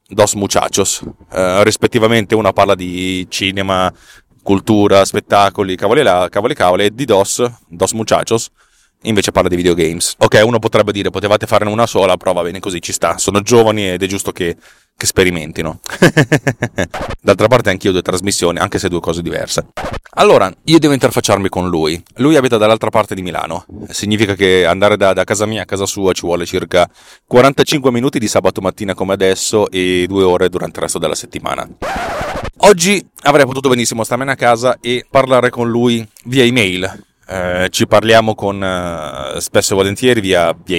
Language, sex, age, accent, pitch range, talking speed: Italian, male, 30-49, native, 95-120 Hz, 175 wpm